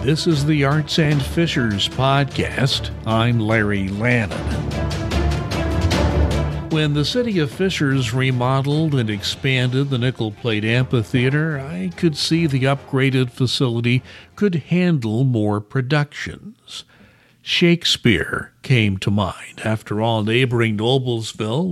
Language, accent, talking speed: English, American, 110 wpm